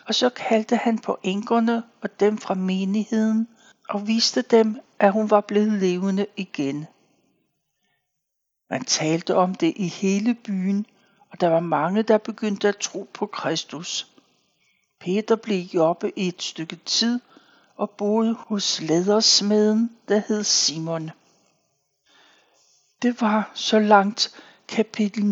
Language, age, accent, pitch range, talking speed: Danish, 60-79, native, 185-215 Hz, 130 wpm